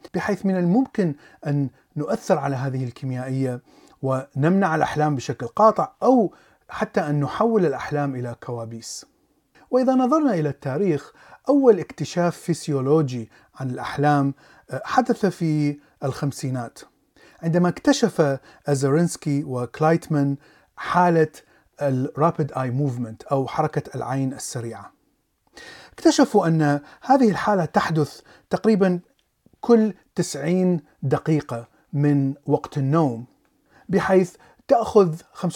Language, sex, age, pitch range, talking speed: Arabic, male, 30-49, 140-185 Hz, 95 wpm